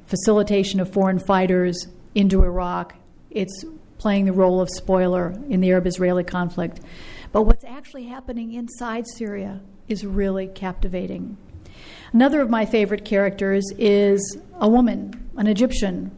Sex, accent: female, American